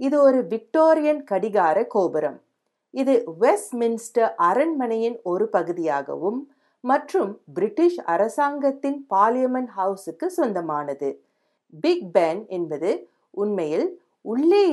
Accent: native